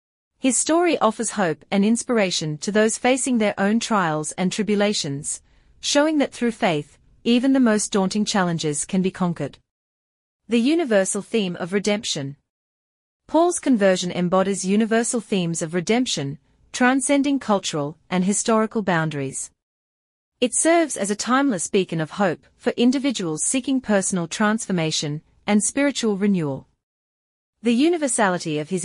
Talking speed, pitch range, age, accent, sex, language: 130 wpm, 165-240 Hz, 40-59, Australian, female, English